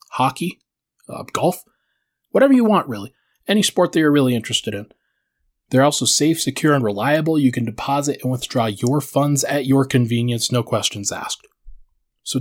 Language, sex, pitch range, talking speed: English, male, 120-160 Hz, 165 wpm